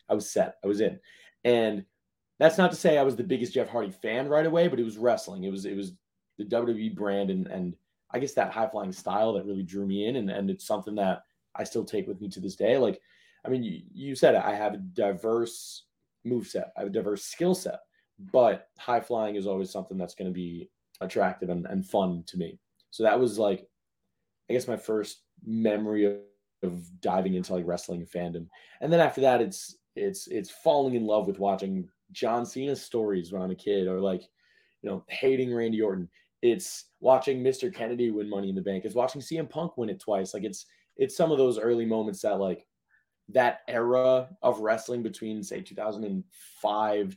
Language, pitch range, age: English, 95-130 Hz, 20-39